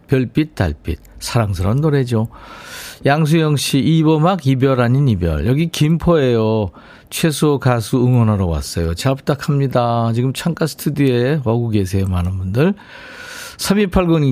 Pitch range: 110-150 Hz